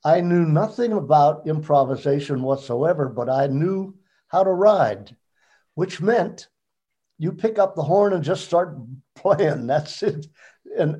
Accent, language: American, English